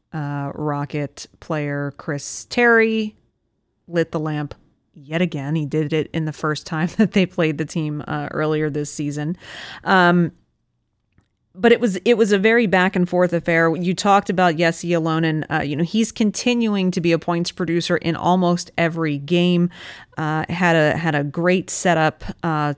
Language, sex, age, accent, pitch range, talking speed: English, female, 30-49, American, 155-180 Hz, 170 wpm